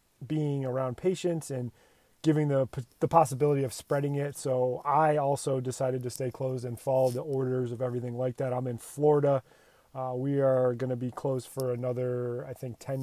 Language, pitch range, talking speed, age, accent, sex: English, 130-145 Hz, 190 wpm, 30-49, American, male